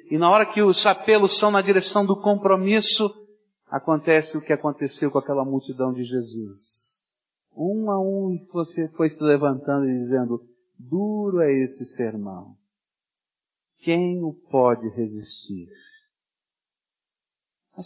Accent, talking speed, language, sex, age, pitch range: Brazilian, 130 wpm, Portuguese, male, 50-69, 170-225 Hz